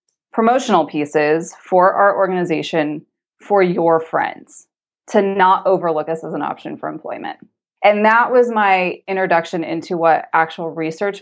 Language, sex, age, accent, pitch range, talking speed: English, female, 20-39, American, 160-205 Hz, 140 wpm